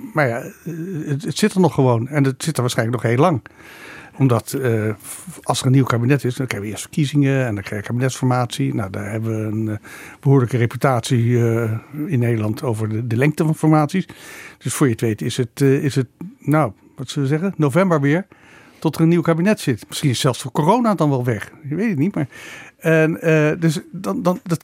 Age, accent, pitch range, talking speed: 60-79, Dutch, 120-150 Hz, 215 wpm